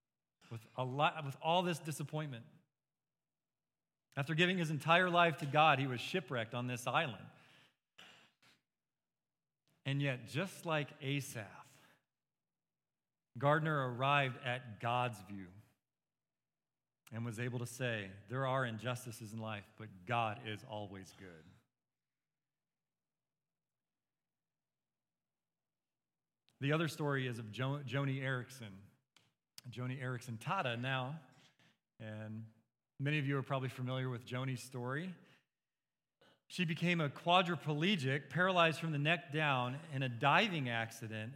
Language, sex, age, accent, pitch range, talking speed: English, male, 40-59, American, 125-155 Hz, 115 wpm